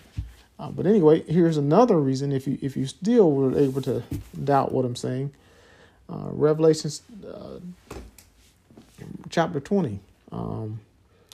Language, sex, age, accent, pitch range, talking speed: English, male, 50-69, American, 120-155 Hz, 125 wpm